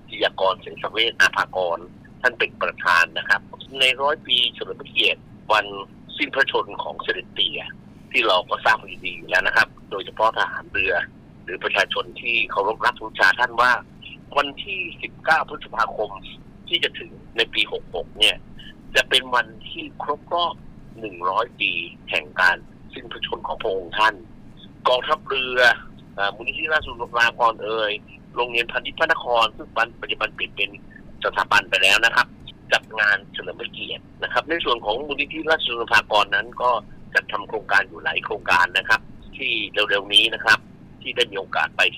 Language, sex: Thai, male